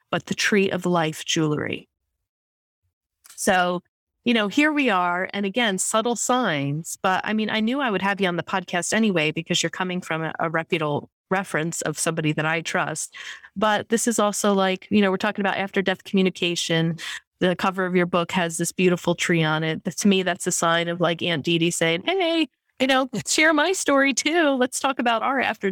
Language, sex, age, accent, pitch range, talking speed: English, female, 30-49, American, 165-205 Hz, 210 wpm